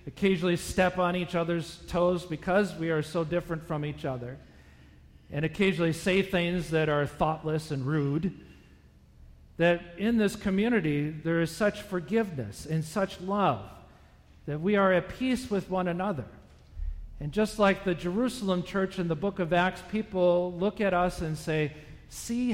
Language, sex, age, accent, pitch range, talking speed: English, male, 40-59, American, 125-180 Hz, 160 wpm